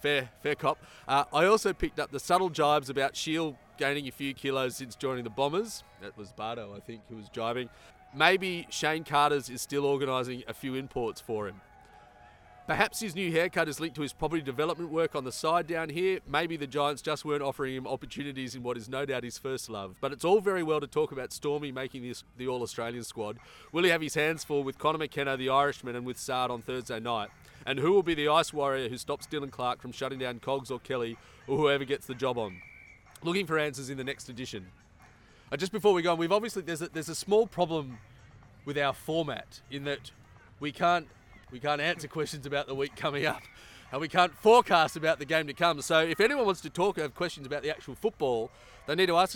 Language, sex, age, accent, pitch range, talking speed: English, male, 30-49, Australian, 125-160 Hz, 230 wpm